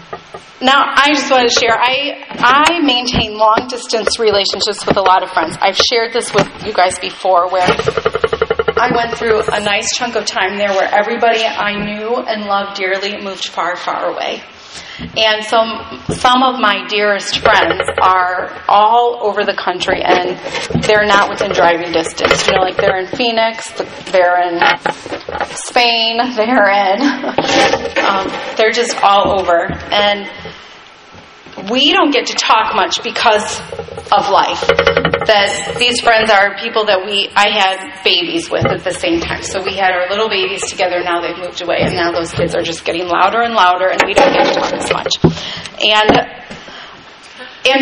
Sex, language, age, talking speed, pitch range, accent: female, English, 30-49, 170 wpm, 195-240 Hz, American